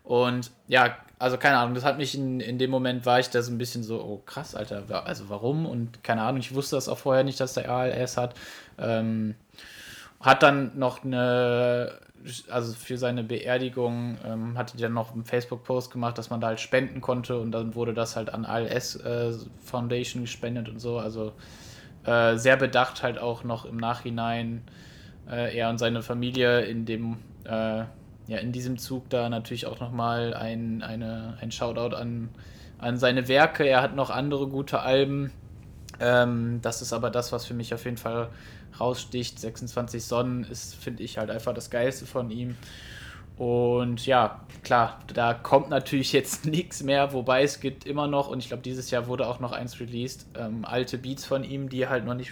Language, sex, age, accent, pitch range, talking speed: German, male, 20-39, German, 115-125 Hz, 190 wpm